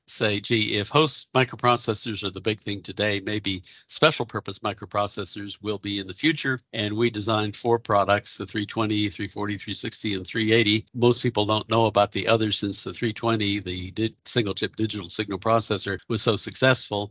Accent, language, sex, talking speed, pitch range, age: American, English, male, 170 wpm, 100-115 Hz, 60-79